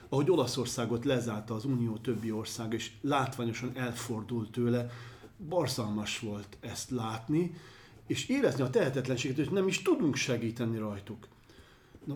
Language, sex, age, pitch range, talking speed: Hungarian, male, 40-59, 110-135 Hz, 130 wpm